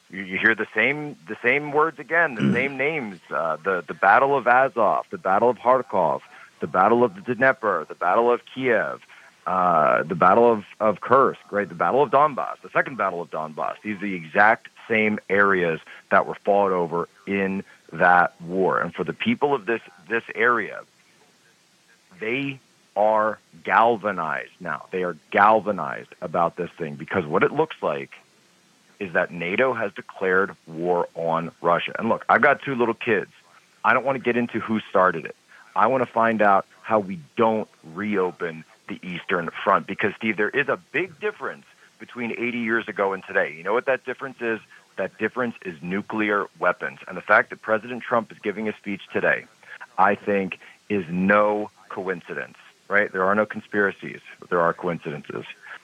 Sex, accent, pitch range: male, American, 100-120 Hz